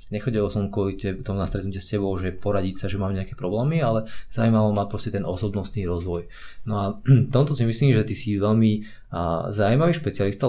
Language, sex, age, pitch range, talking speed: Slovak, male, 20-39, 100-115 Hz, 185 wpm